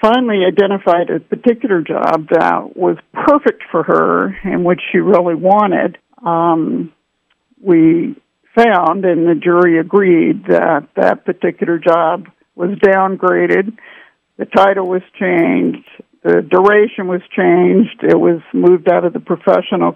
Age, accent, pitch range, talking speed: 60-79, American, 175-205 Hz, 130 wpm